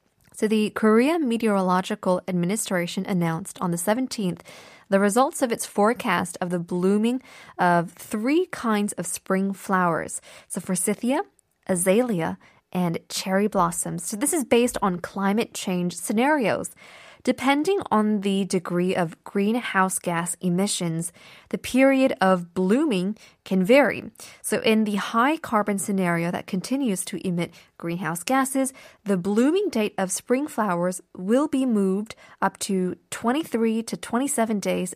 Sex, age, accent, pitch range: female, 20-39, American, 185-250 Hz